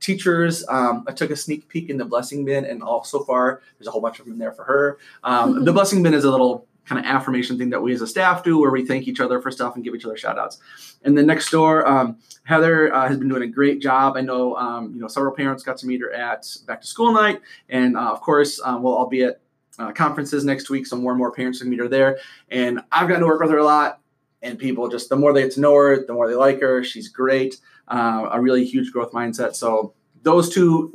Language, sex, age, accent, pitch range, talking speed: English, male, 20-39, American, 125-150 Hz, 270 wpm